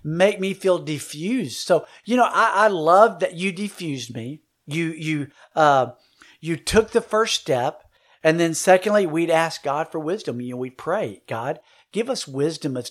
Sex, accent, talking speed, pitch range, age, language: male, American, 180 wpm, 145-195 Hz, 50-69, English